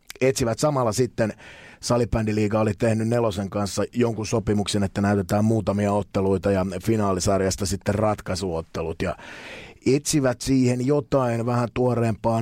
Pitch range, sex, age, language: 100-120 Hz, male, 30-49, Finnish